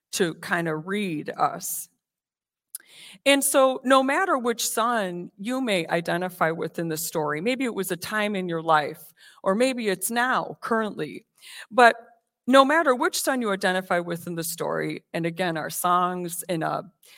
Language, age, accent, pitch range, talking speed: English, 40-59, American, 170-230 Hz, 170 wpm